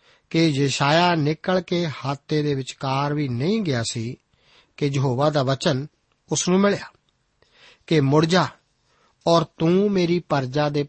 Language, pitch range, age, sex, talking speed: Punjabi, 135-160 Hz, 50-69, male, 150 wpm